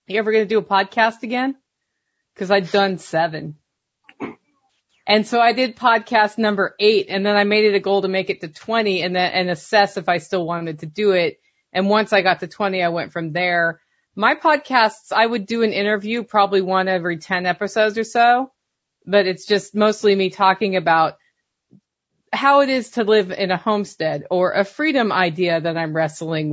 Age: 30-49